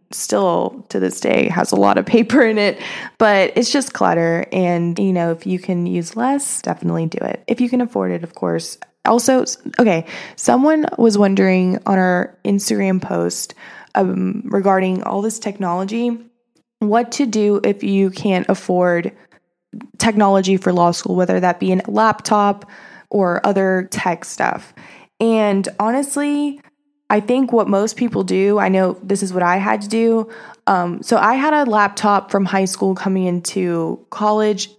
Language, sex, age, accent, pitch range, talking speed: English, female, 20-39, American, 180-225 Hz, 165 wpm